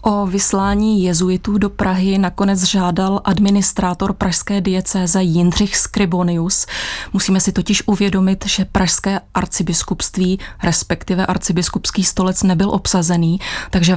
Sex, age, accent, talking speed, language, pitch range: female, 30-49, native, 105 wpm, Czech, 175-195 Hz